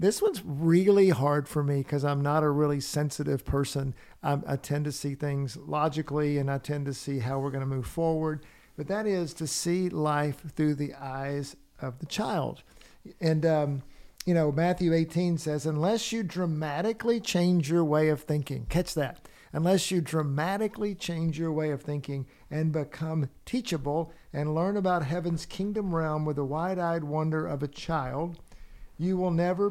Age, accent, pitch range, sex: 50-69, American, 145-175 Hz, male